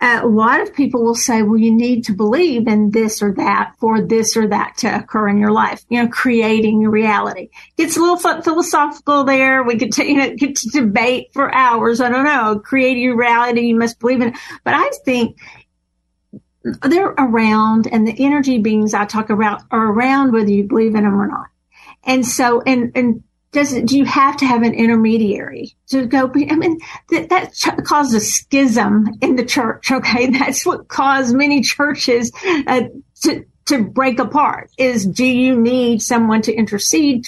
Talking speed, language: 190 wpm, English